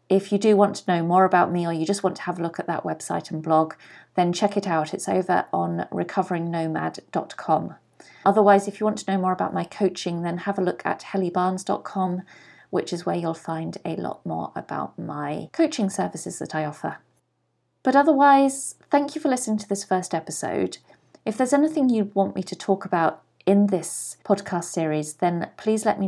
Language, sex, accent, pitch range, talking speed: English, female, British, 170-215 Hz, 205 wpm